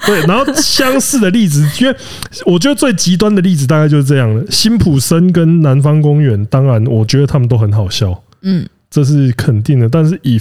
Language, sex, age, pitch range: Chinese, male, 20-39, 110-145 Hz